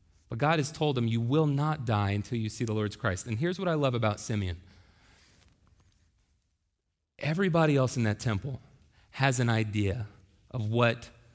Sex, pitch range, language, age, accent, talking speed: male, 110-155 Hz, English, 30-49, American, 170 wpm